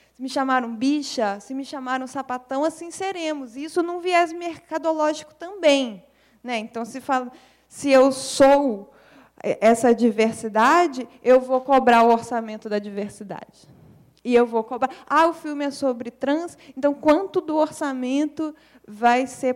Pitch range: 240-305 Hz